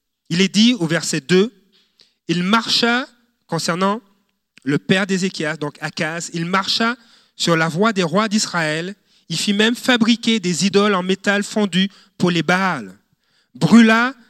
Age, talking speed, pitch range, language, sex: 40-59, 145 wpm, 165-215 Hz, French, male